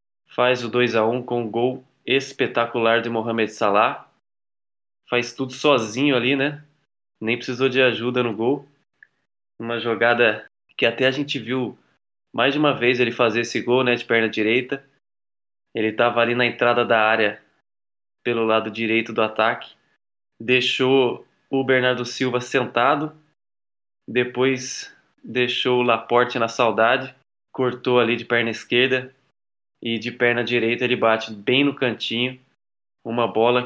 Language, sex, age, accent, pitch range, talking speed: Portuguese, male, 20-39, Brazilian, 115-130 Hz, 145 wpm